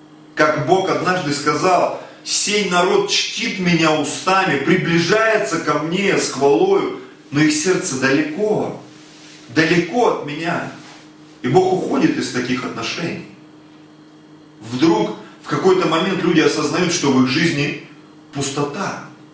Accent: native